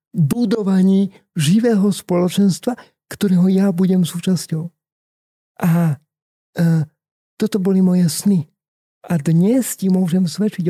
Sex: male